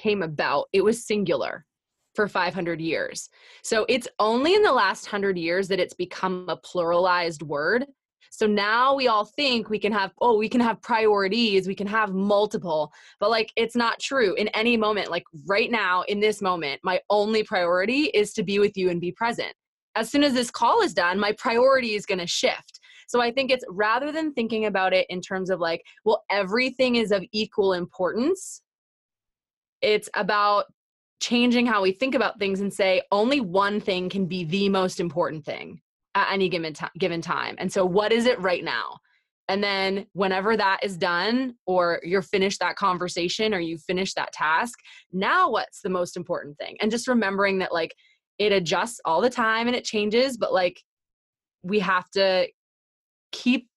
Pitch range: 180-230 Hz